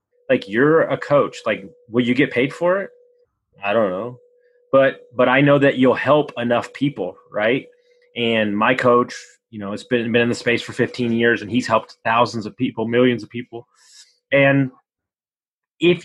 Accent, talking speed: American, 185 wpm